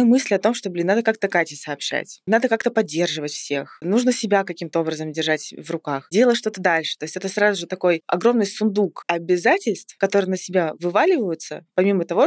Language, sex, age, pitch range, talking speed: Russian, female, 20-39, 170-215 Hz, 185 wpm